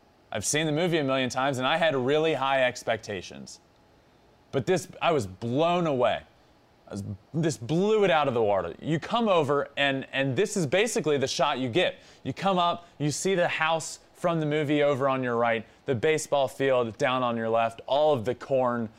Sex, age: male, 20-39